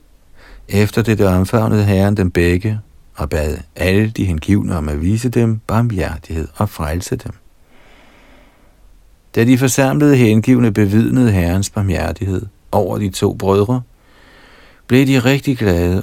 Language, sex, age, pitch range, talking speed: Danish, male, 50-69, 85-110 Hz, 130 wpm